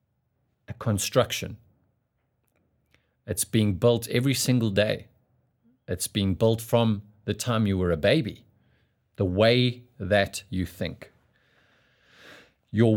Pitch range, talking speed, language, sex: 100-125 Hz, 110 wpm, English, male